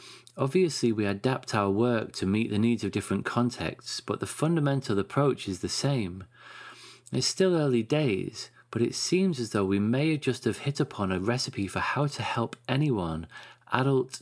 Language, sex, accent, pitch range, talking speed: English, male, British, 100-125 Hz, 175 wpm